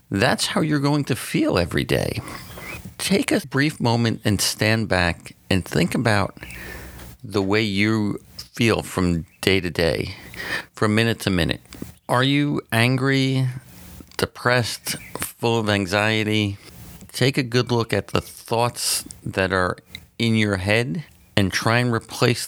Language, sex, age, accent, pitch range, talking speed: English, male, 50-69, American, 95-120 Hz, 140 wpm